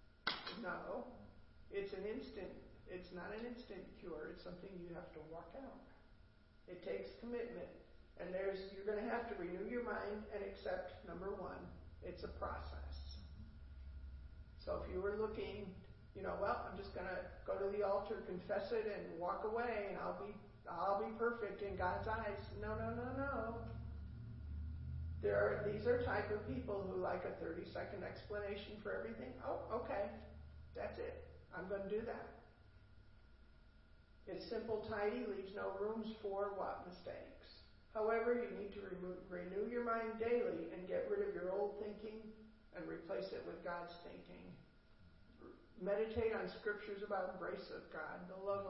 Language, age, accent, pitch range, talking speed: English, 50-69, American, 175-215 Hz, 165 wpm